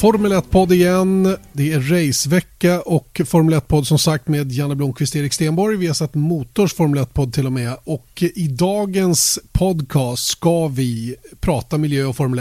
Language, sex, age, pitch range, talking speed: Swedish, male, 30-49, 130-160 Hz, 180 wpm